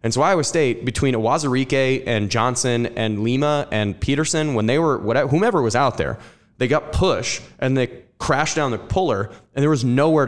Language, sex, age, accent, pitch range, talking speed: English, male, 20-39, American, 110-135 Hz, 195 wpm